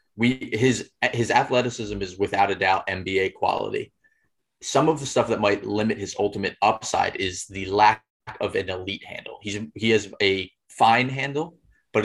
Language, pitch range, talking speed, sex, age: English, 100-115 Hz, 170 wpm, male, 20-39